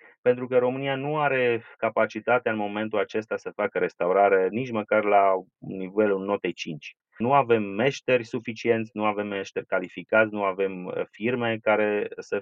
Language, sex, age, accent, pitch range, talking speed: Romanian, male, 30-49, native, 105-150 Hz, 150 wpm